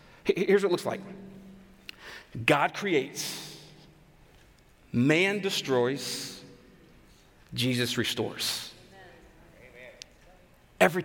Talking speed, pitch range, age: 65 wpm, 155-200 Hz, 40-59